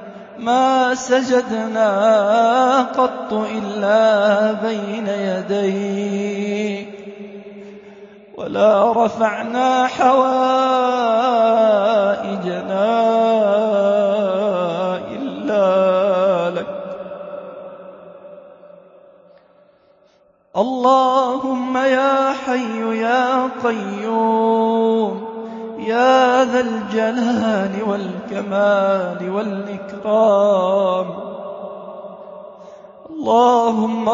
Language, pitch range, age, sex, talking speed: Arabic, 200-250 Hz, 20-39, male, 40 wpm